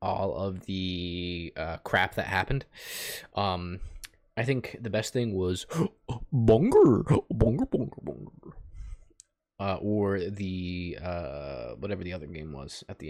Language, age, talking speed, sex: English, 30-49, 135 wpm, male